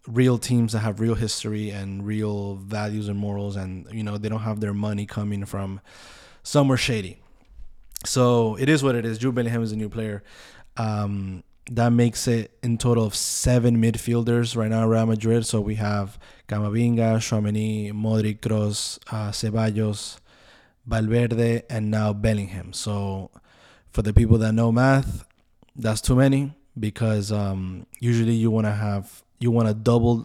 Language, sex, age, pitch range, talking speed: English, male, 20-39, 105-120 Hz, 165 wpm